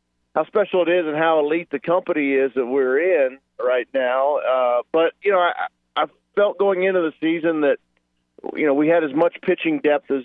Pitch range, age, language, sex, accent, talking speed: 120-150 Hz, 50-69, English, male, American, 210 wpm